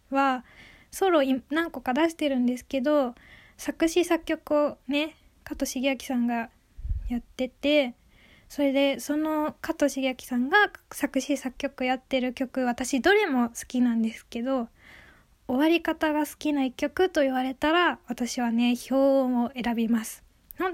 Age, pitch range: 20-39, 260-315 Hz